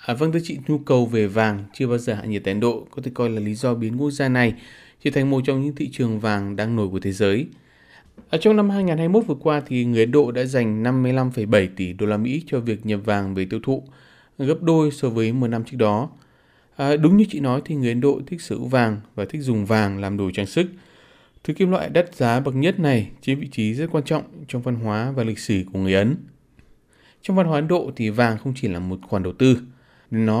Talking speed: 255 wpm